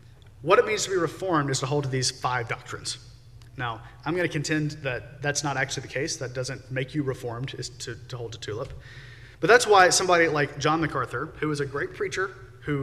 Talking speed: 225 wpm